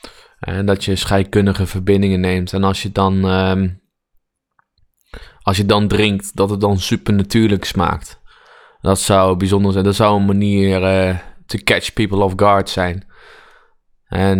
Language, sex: Dutch, male